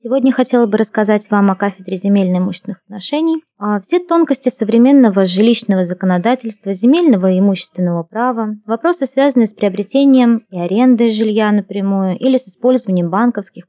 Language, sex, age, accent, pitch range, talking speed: Russian, female, 20-39, native, 190-245 Hz, 130 wpm